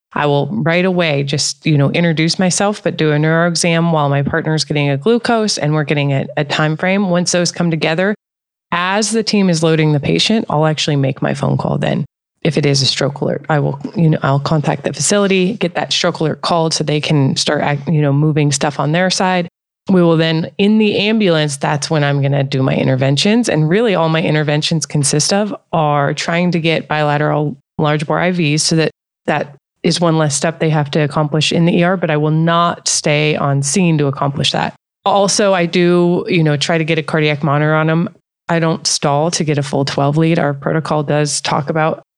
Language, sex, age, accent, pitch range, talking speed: English, female, 20-39, American, 150-175 Hz, 220 wpm